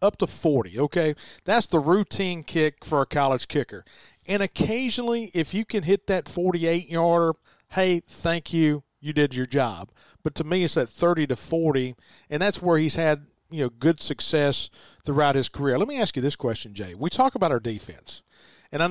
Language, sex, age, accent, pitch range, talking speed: English, male, 40-59, American, 135-170 Hz, 195 wpm